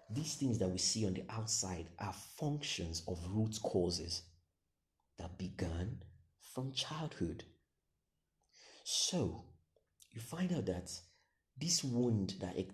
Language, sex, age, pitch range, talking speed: English, male, 40-59, 90-115 Hz, 120 wpm